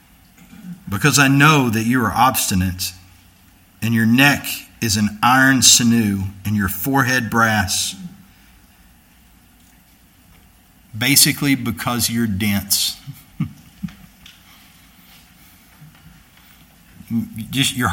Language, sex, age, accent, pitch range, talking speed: English, male, 50-69, American, 95-145 Hz, 75 wpm